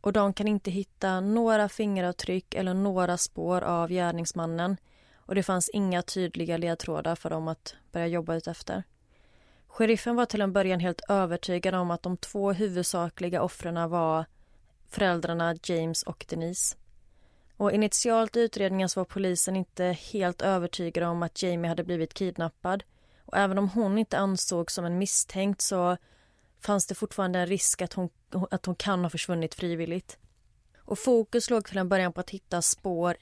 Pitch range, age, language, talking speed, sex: 170-195 Hz, 30-49, Swedish, 165 wpm, female